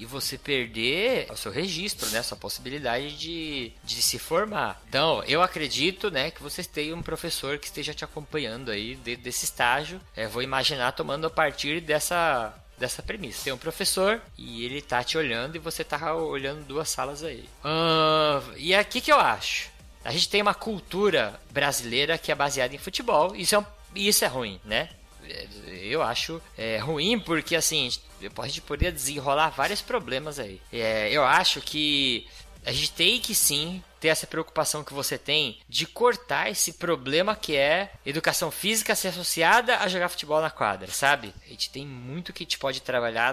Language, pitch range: Portuguese, 125-165 Hz